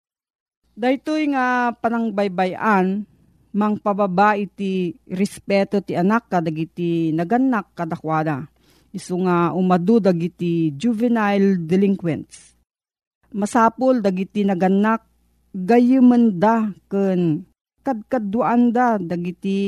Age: 40-59